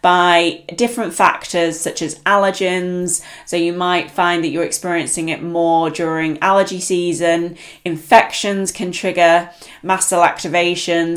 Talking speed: 130 wpm